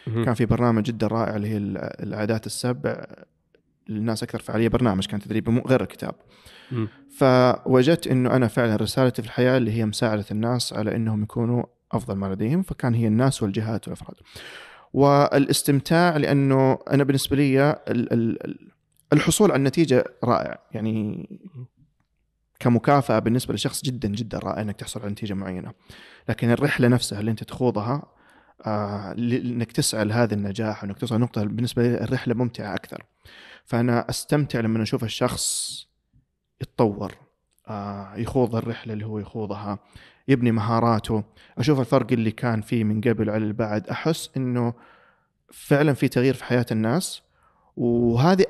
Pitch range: 110-130 Hz